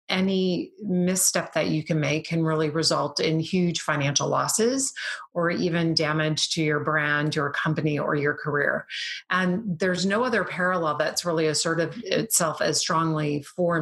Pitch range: 155-180 Hz